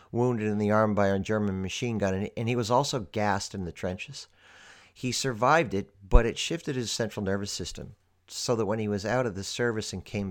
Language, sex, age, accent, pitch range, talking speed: English, male, 50-69, American, 90-115 Hz, 220 wpm